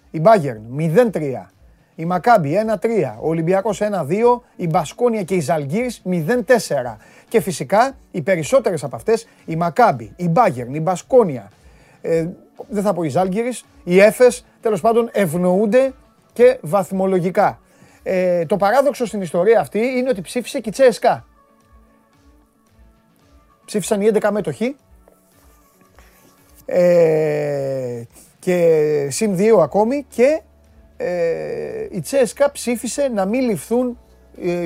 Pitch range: 180-245 Hz